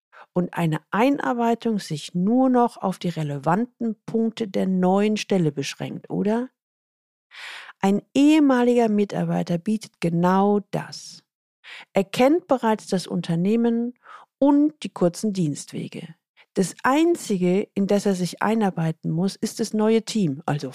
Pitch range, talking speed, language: 180-230 Hz, 125 wpm, German